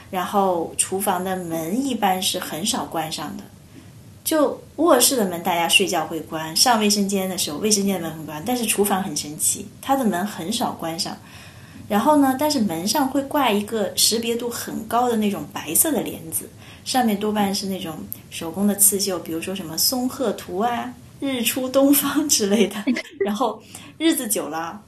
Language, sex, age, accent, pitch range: Chinese, female, 20-39, native, 185-245 Hz